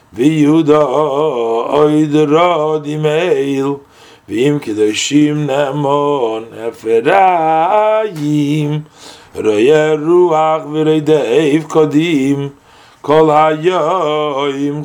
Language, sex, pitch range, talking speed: English, male, 115-155 Hz, 60 wpm